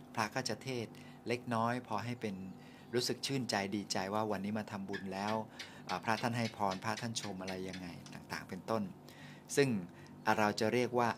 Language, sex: Thai, male